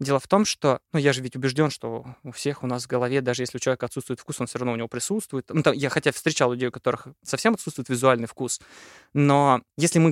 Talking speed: 255 wpm